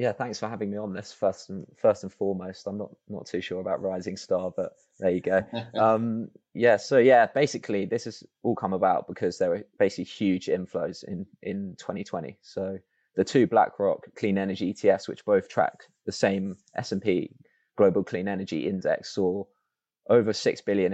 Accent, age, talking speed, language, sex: British, 20-39, 185 wpm, English, male